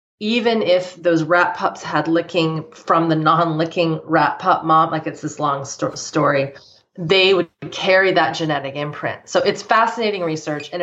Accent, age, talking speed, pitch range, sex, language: American, 30-49, 160 wpm, 150-175 Hz, female, English